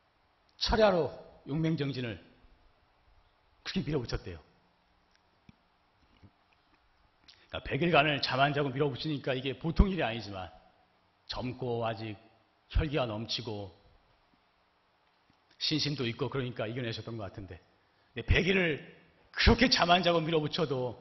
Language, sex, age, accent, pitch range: Korean, male, 40-59, native, 105-175 Hz